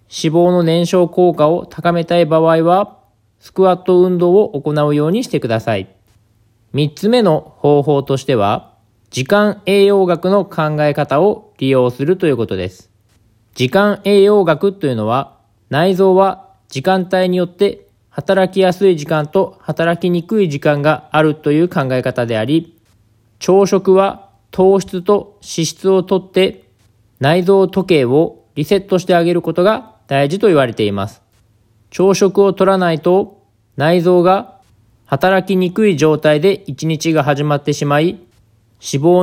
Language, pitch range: Japanese, 130-185 Hz